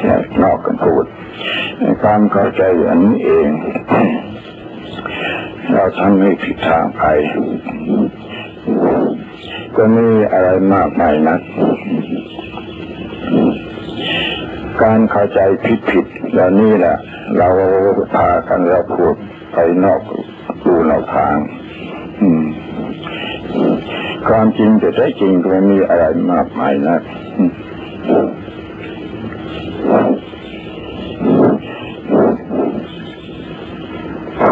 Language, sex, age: Thai, male, 60-79